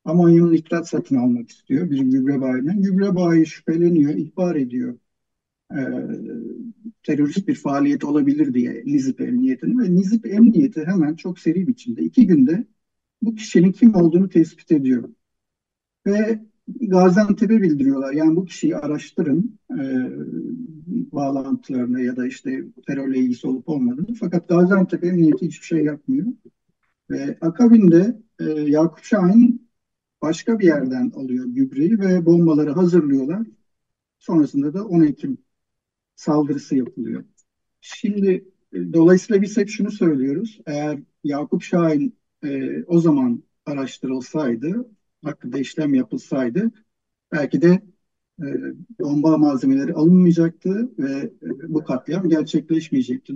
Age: 50-69